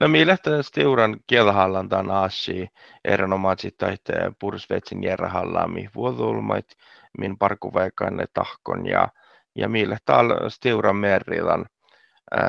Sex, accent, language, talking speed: male, native, Finnish, 95 wpm